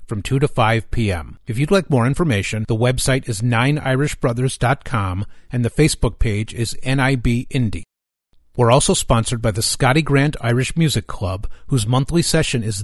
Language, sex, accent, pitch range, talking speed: English, male, American, 110-140 Hz, 165 wpm